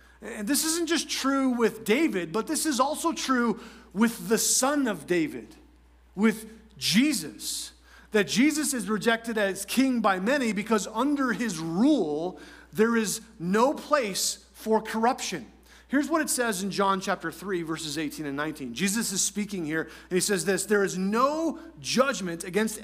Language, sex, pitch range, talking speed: English, male, 180-255 Hz, 165 wpm